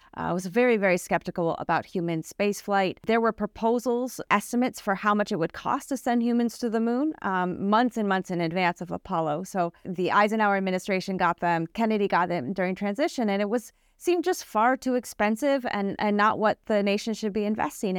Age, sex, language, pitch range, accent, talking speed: 30-49, female, English, 180-225 Hz, American, 205 wpm